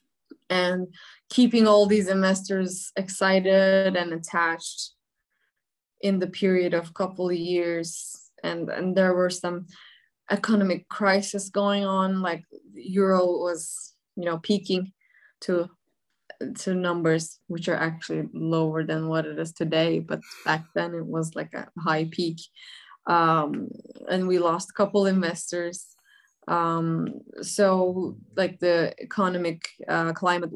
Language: English